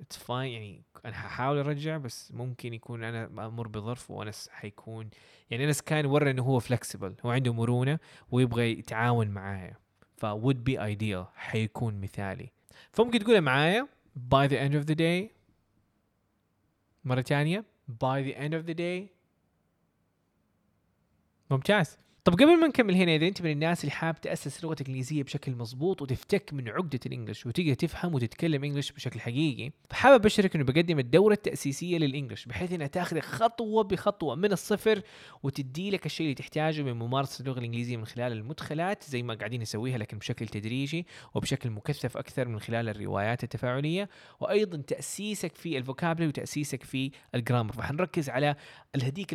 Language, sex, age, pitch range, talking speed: Arabic, male, 20-39, 120-155 Hz, 150 wpm